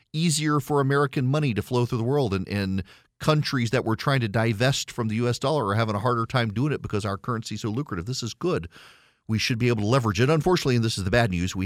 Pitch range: 100-130 Hz